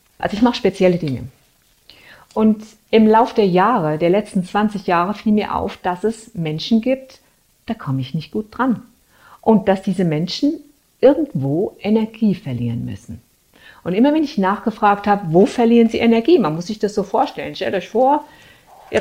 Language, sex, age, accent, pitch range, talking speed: German, female, 50-69, German, 160-220 Hz, 175 wpm